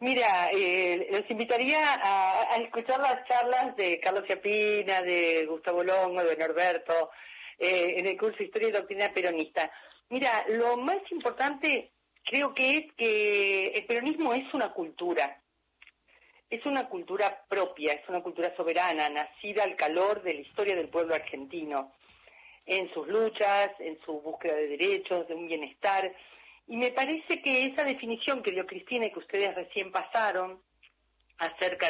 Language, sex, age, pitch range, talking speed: Spanish, female, 40-59, 165-235 Hz, 155 wpm